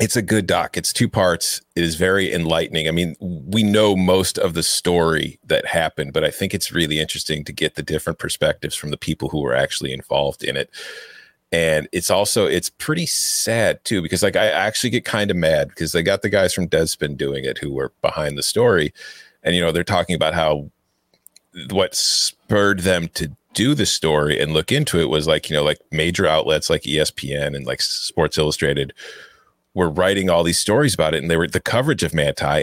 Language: English